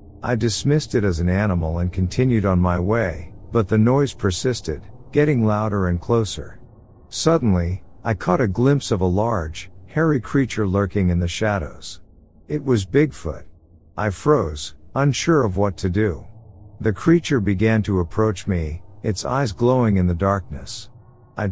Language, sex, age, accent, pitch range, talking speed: English, male, 50-69, American, 90-115 Hz, 155 wpm